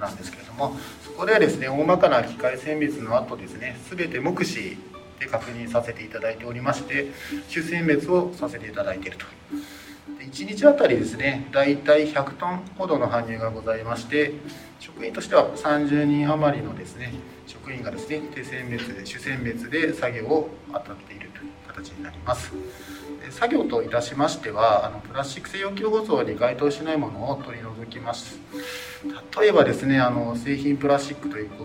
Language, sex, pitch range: Japanese, male, 115-150 Hz